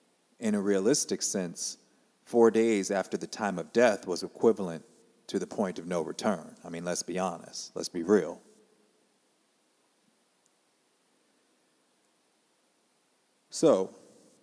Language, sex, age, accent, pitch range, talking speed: English, male, 40-59, American, 100-115 Hz, 115 wpm